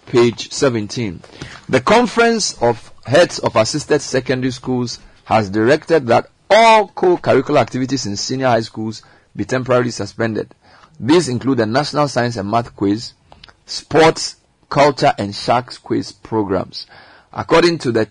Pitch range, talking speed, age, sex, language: 105-140 Hz, 135 wpm, 50-69, male, English